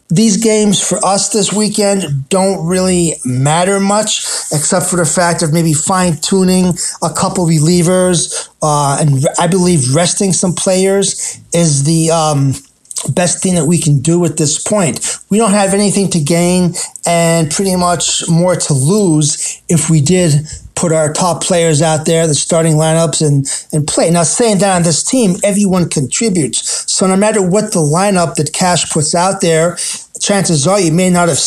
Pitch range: 155-190 Hz